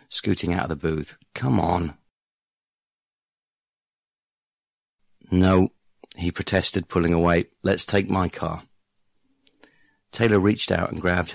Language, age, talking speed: English, 50-69, 110 wpm